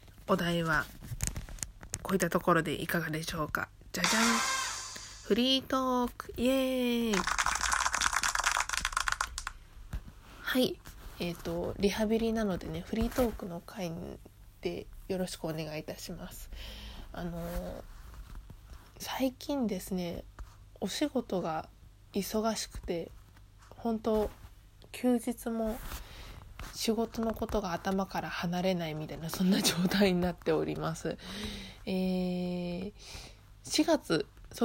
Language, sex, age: Japanese, female, 20-39